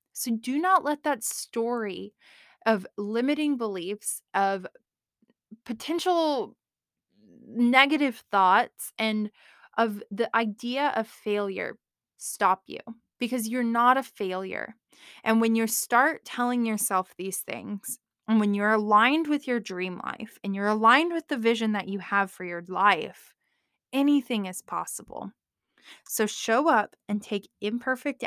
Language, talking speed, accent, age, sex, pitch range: English, 135 wpm, American, 20-39, female, 215-295 Hz